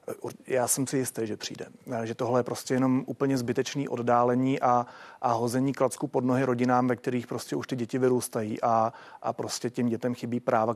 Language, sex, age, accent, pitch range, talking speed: Czech, male, 40-59, native, 120-135 Hz, 195 wpm